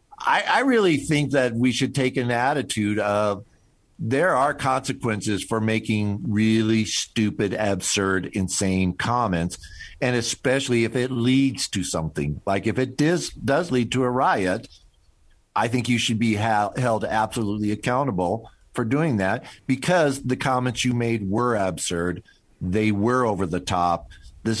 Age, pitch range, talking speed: 50-69, 100-130 Hz, 145 wpm